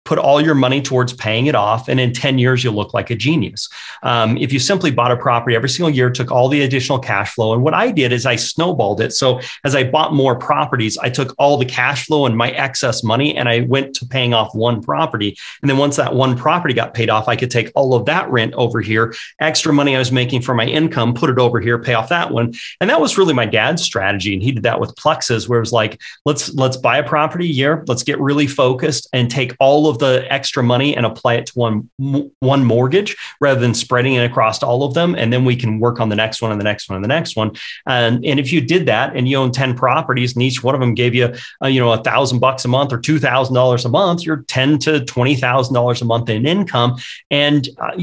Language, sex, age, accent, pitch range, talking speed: English, male, 30-49, American, 120-145 Hz, 260 wpm